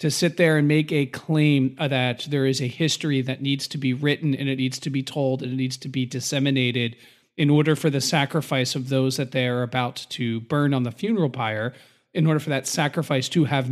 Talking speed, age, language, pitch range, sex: 225 wpm, 40-59, English, 130-165 Hz, male